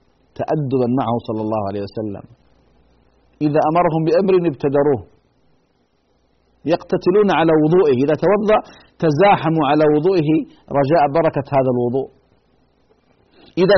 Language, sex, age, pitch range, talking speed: Arabic, male, 50-69, 125-180 Hz, 100 wpm